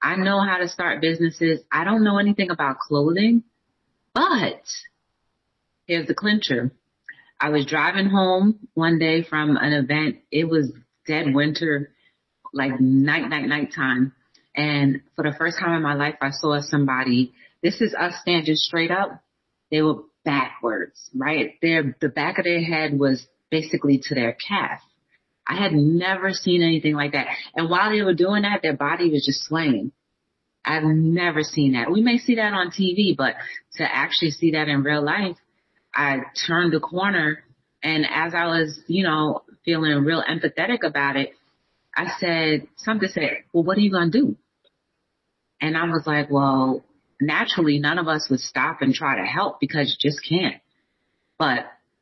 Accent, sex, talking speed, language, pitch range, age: American, female, 175 wpm, English, 145-175 Hz, 30-49